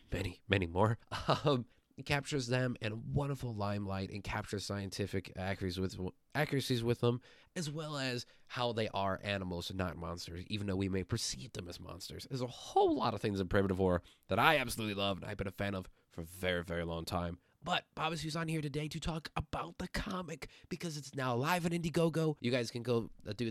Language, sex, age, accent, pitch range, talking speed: English, male, 20-39, American, 95-130 Hz, 215 wpm